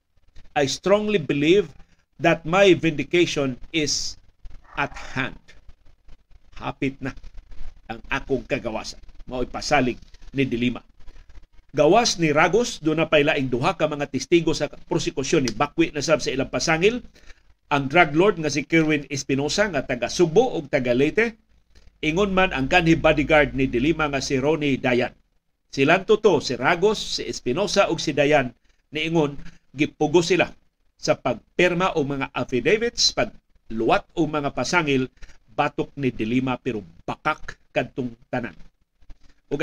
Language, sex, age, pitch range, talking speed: Filipino, male, 50-69, 130-165 Hz, 140 wpm